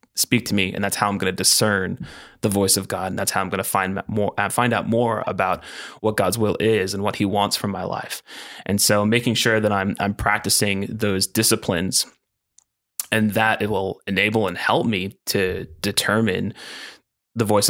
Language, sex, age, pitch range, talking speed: English, male, 20-39, 100-115 Hz, 200 wpm